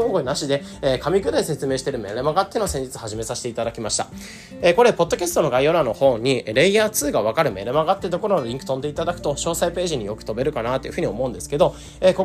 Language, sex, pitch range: Japanese, male, 130-195 Hz